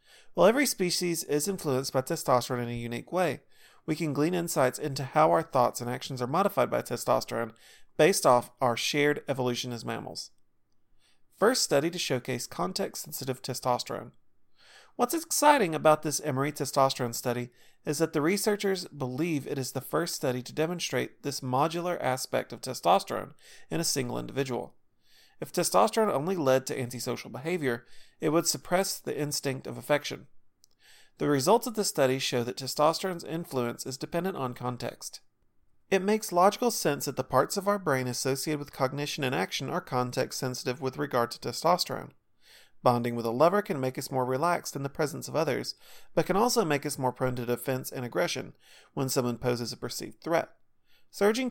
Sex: male